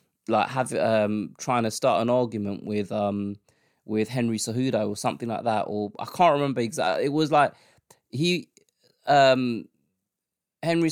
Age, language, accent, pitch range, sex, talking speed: 20-39, English, British, 105-140 Hz, male, 155 wpm